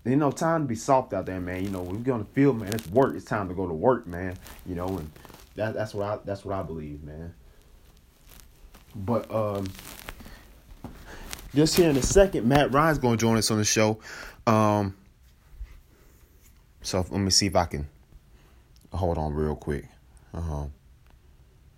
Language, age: English, 30-49